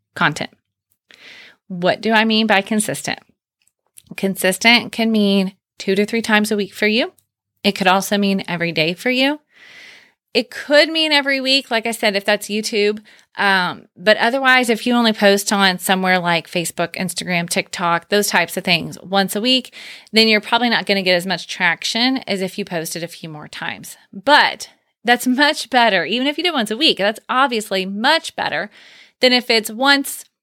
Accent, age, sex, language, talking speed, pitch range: American, 30-49, female, English, 185 wpm, 195-240 Hz